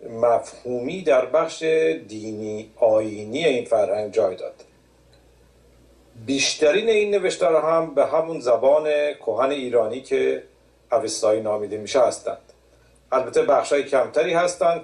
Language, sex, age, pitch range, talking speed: Persian, male, 50-69, 120-165 Hz, 110 wpm